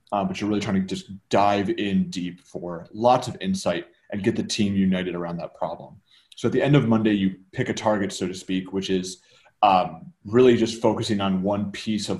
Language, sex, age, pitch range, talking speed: English, male, 30-49, 95-120 Hz, 220 wpm